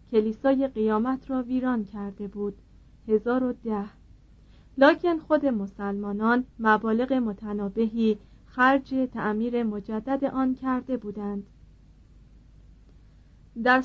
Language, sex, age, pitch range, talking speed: Persian, female, 40-59, 210-255 Hz, 80 wpm